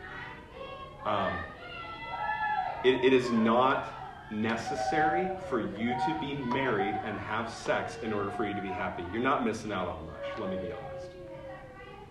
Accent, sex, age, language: American, male, 30-49, English